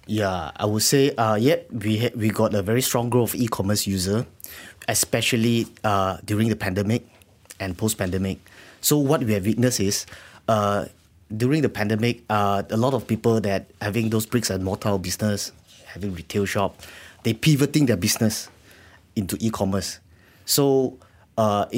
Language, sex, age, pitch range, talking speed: English, male, 30-49, 100-120 Hz, 155 wpm